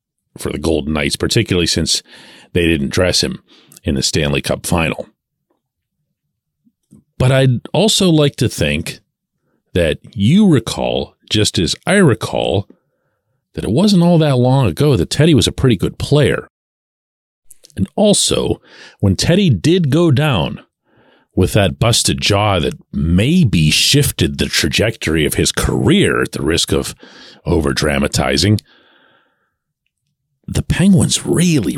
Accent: American